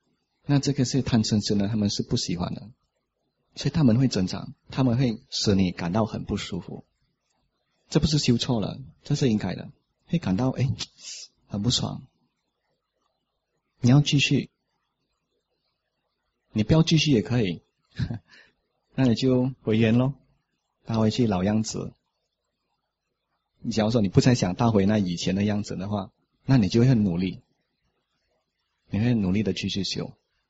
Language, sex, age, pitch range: English, male, 30-49, 95-120 Hz